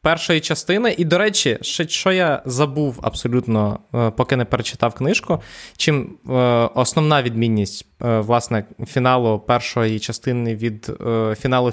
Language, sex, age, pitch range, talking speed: Ukrainian, male, 20-39, 120-160 Hz, 115 wpm